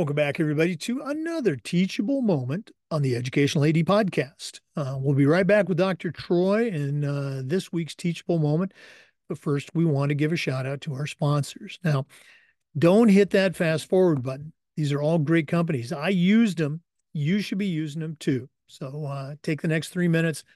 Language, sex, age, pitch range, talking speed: English, male, 50-69, 140-185 Hz, 185 wpm